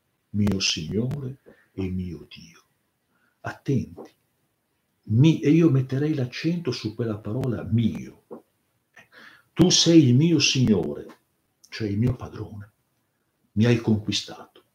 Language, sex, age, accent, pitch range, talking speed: Italian, male, 60-79, native, 105-135 Hz, 110 wpm